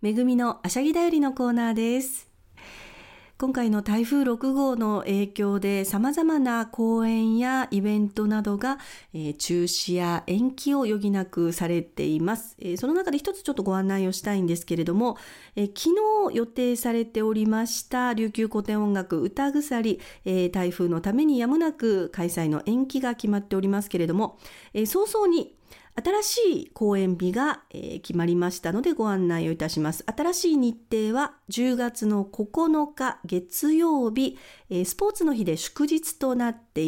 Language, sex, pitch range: Japanese, female, 185-270 Hz